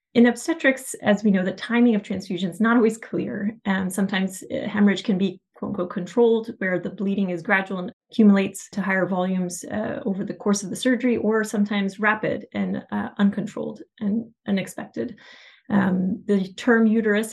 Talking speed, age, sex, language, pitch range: 180 wpm, 30-49, female, English, 190-230 Hz